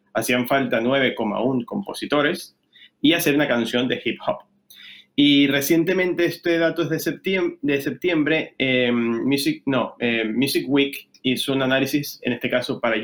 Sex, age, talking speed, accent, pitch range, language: male, 30-49, 145 wpm, Argentinian, 125-150 Hz, Spanish